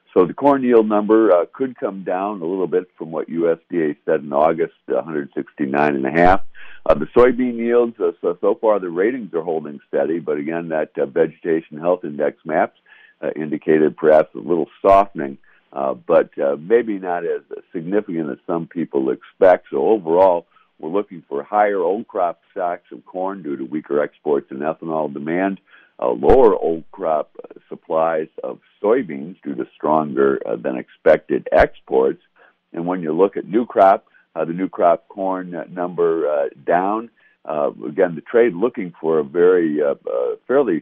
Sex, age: male, 60-79